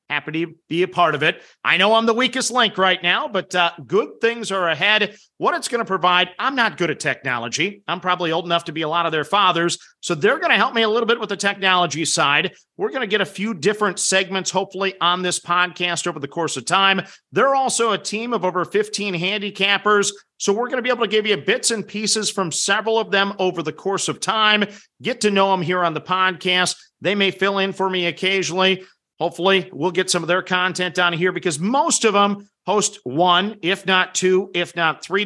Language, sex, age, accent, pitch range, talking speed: English, male, 40-59, American, 170-200 Hz, 225 wpm